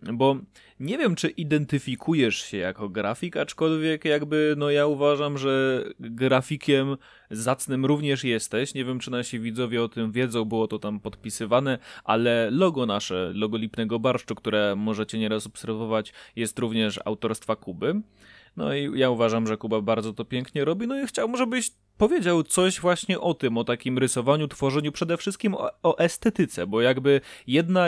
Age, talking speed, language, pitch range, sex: 20-39, 160 wpm, English, 120-150 Hz, male